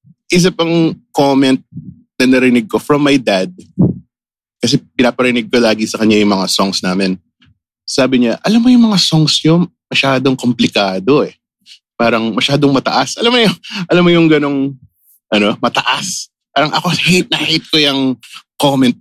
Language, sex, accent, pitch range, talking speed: English, male, Filipino, 115-165 Hz, 160 wpm